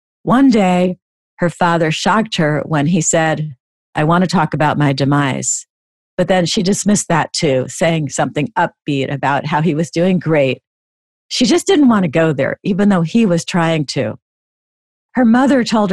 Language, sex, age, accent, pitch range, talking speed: English, female, 50-69, American, 150-185 Hz, 175 wpm